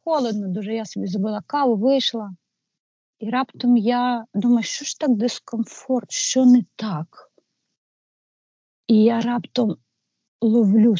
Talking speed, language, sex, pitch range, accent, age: 120 wpm, Ukrainian, female, 180-235 Hz, native, 40-59